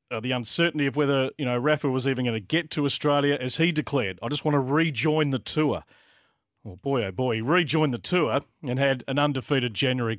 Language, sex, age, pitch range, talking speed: English, male, 40-59, 130-160 Hz, 220 wpm